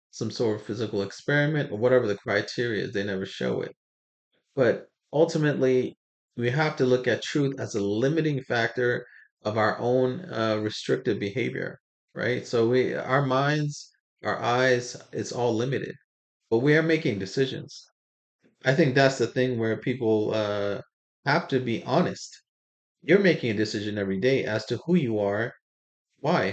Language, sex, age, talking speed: English, male, 30-49, 160 wpm